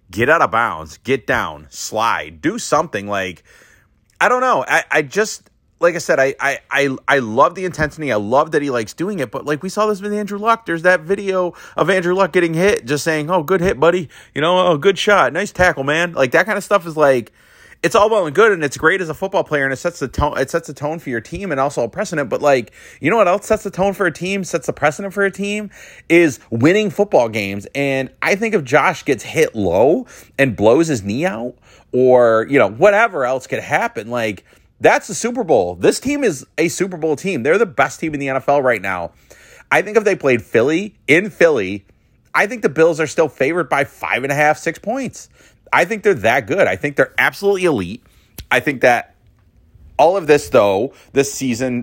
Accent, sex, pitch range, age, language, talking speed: American, male, 120-185 Hz, 30-49, English, 235 wpm